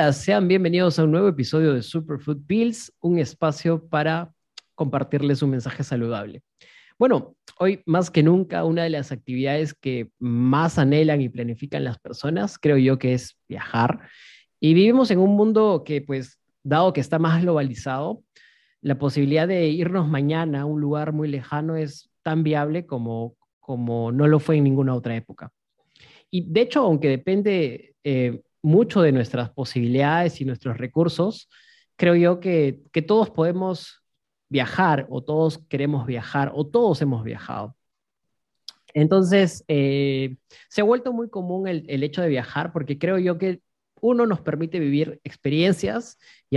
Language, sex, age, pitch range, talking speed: Spanish, male, 30-49, 135-175 Hz, 155 wpm